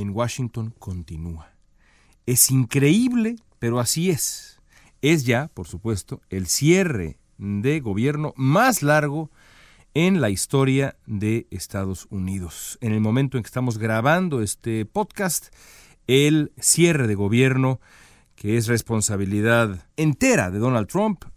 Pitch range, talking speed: 105-155 Hz, 125 wpm